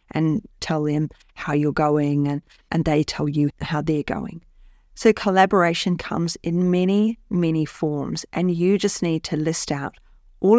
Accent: Australian